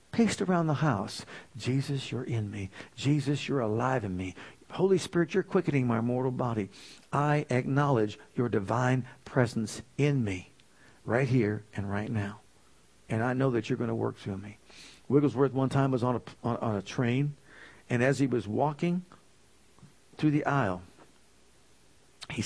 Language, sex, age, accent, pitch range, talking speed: English, male, 60-79, American, 115-150 Hz, 165 wpm